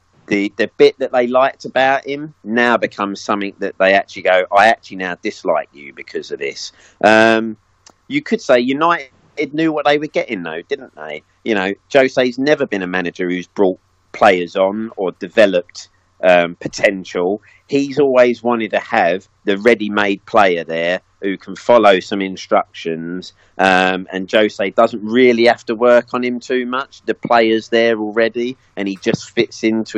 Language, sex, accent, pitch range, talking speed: English, male, British, 95-120 Hz, 175 wpm